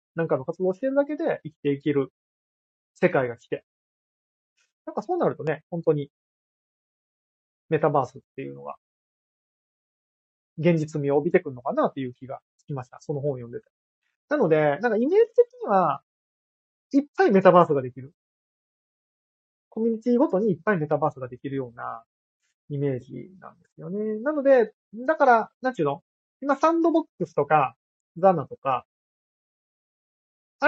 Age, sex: 20-39, male